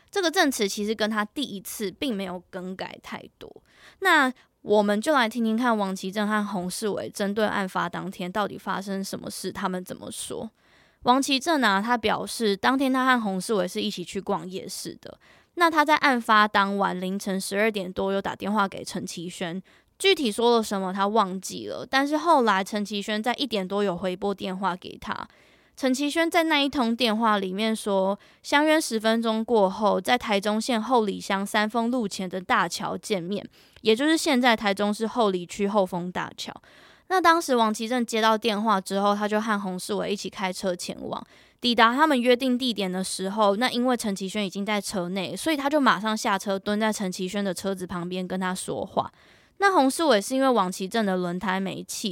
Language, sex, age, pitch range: Chinese, female, 20-39, 195-245 Hz